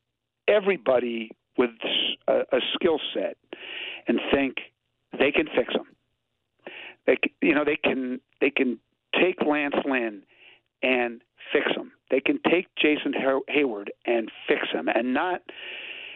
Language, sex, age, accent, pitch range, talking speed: English, male, 60-79, American, 130-185 Hz, 135 wpm